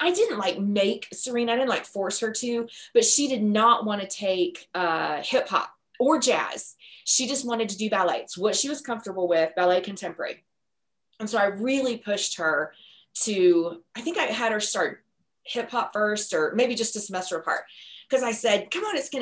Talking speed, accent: 205 wpm, American